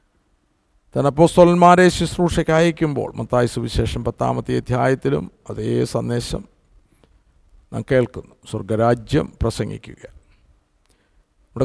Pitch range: 110-155 Hz